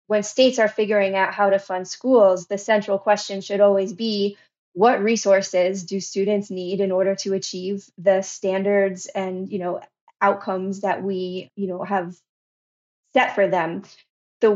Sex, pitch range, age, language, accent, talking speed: female, 190-210 Hz, 20-39, English, American, 160 wpm